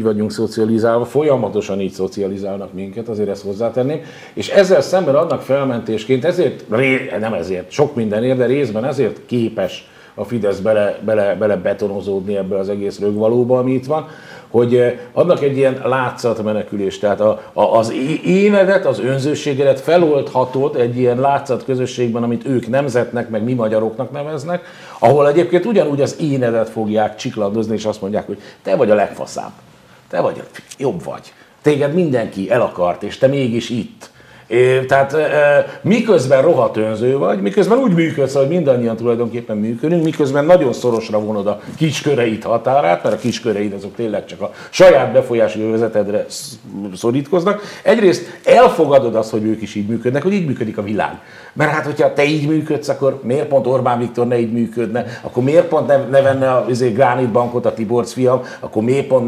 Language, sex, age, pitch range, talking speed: Hungarian, male, 50-69, 110-145 Hz, 160 wpm